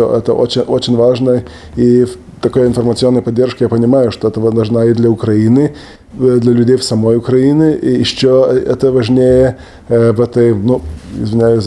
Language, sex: Russian, male